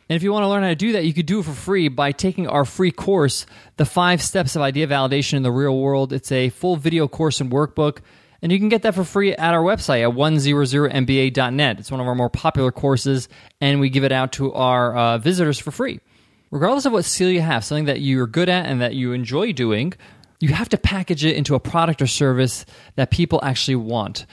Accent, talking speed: American, 240 wpm